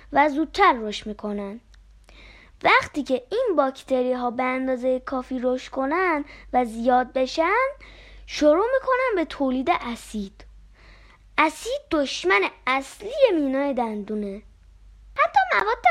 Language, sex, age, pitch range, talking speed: Persian, female, 20-39, 265-370 Hz, 110 wpm